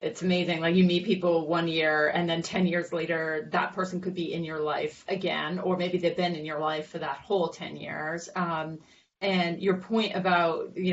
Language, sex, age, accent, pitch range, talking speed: English, female, 30-49, American, 165-185 Hz, 215 wpm